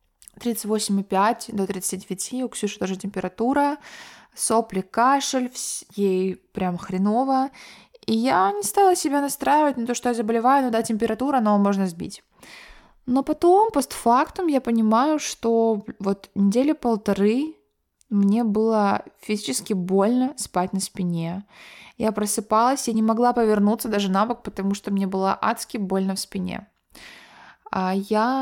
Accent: native